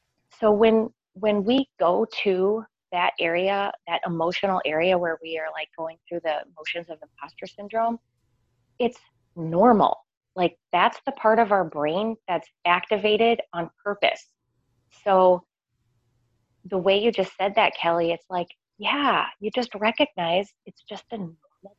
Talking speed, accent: 145 wpm, American